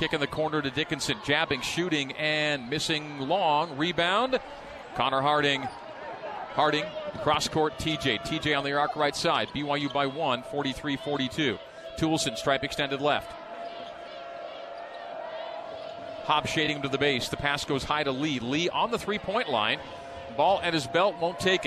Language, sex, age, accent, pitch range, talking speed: English, male, 40-59, American, 145-190 Hz, 145 wpm